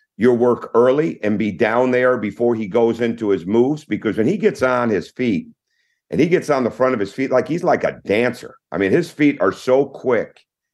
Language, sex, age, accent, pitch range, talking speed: English, male, 50-69, American, 115-150 Hz, 230 wpm